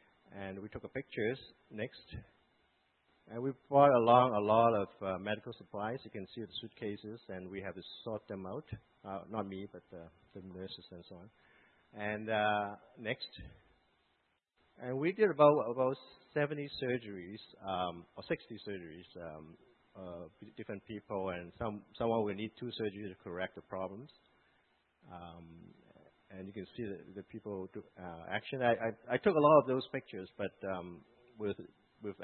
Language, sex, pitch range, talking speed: English, male, 90-120 Hz, 170 wpm